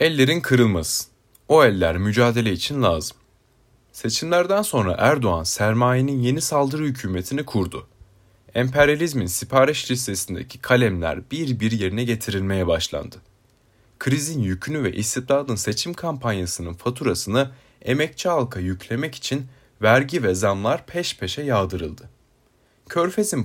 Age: 30-49